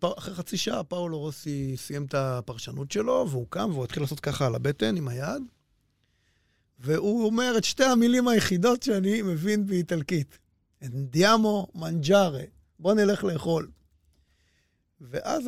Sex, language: male, Hebrew